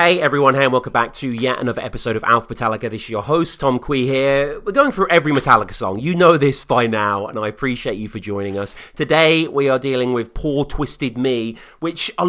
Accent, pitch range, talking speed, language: British, 120-160 Hz, 235 wpm, English